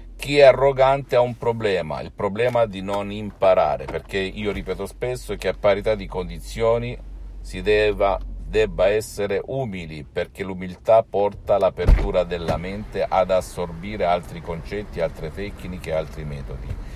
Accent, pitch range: native, 85-105 Hz